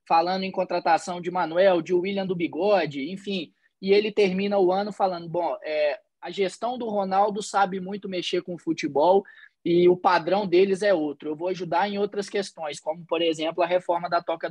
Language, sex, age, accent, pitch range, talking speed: Portuguese, male, 20-39, Brazilian, 160-195 Hz, 190 wpm